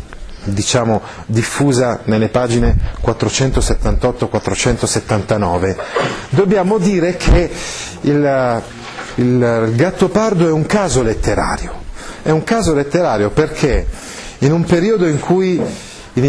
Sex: male